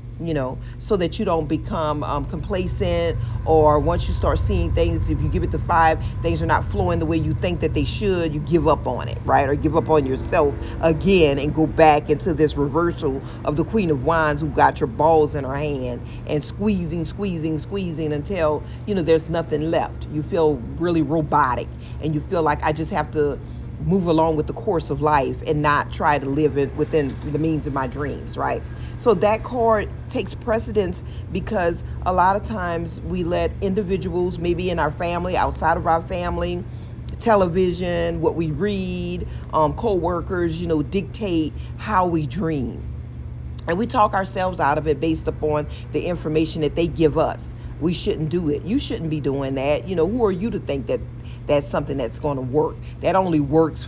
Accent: American